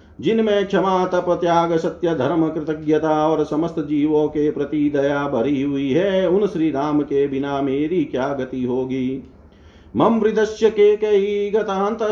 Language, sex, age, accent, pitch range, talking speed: Hindi, male, 50-69, native, 140-190 Hz, 140 wpm